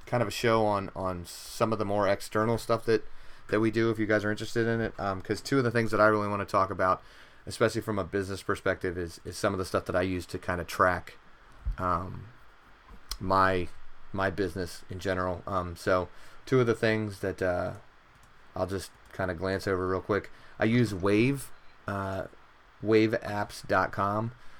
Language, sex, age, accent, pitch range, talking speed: English, male, 30-49, American, 90-110 Hz, 200 wpm